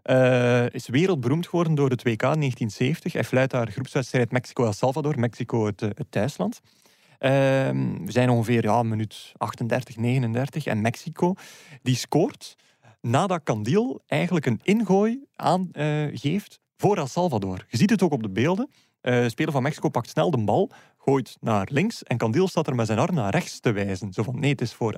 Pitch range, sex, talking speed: 120-160 Hz, male, 185 wpm